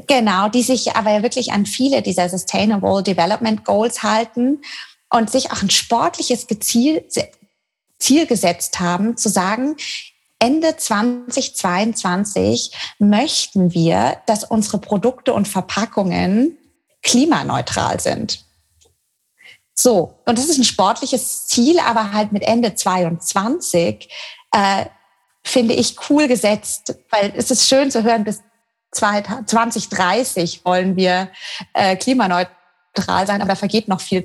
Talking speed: 125 wpm